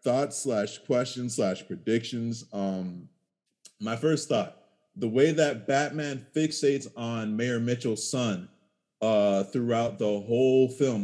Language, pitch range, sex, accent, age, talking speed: English, 110-135 Hz, male, American, 30-49, 125 wpm